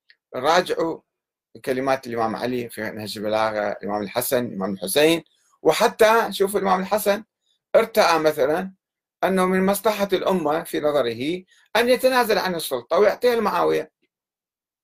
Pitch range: 150-205 Hz